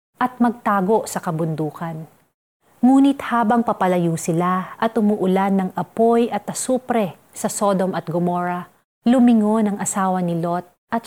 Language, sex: Filipino, female